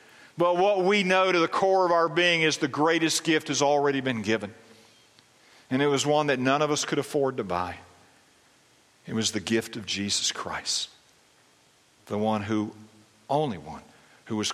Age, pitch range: 50-69, 95-125 Hz